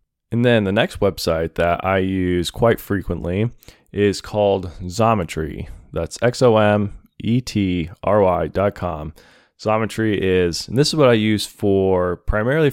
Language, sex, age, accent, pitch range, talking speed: English, male, 20-39, American, 95-115 Hz, 120 wpm